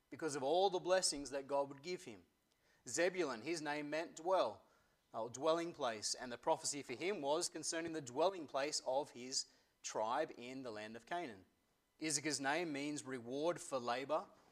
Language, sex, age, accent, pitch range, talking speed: English, male, 30-49, Australian, 125-160 Hz, 175 wpm